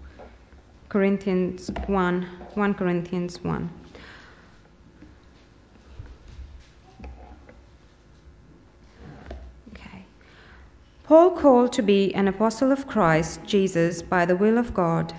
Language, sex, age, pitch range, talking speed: English, female, 30-49, 170-235 Hz, 80 wpm